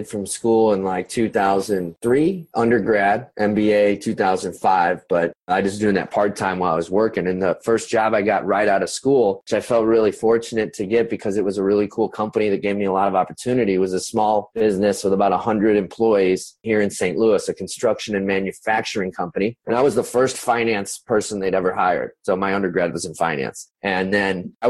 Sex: male